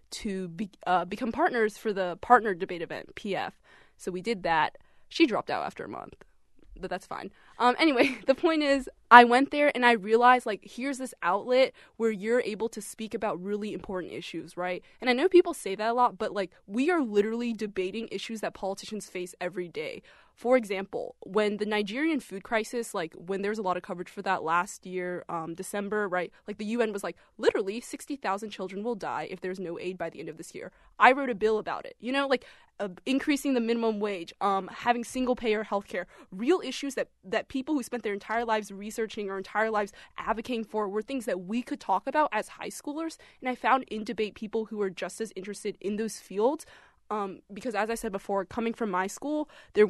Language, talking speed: English, 215 wpm